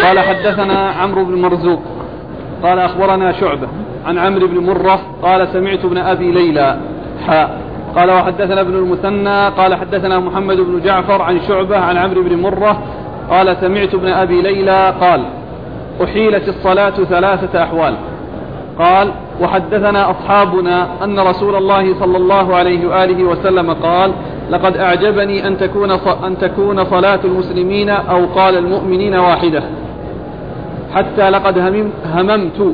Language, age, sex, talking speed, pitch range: Arabic, 40-59, male, 130 wpm, 180-200 Hz